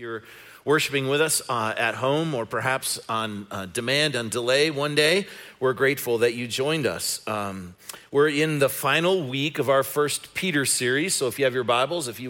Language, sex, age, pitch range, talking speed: English, male, 40-59, 120-145 Hz, 200 wpm